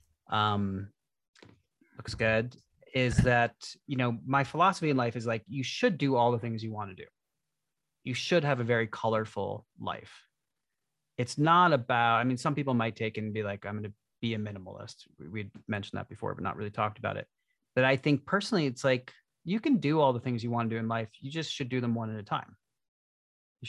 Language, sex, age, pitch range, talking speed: English, male, 30-49, 100-130 Hz, 220 wpm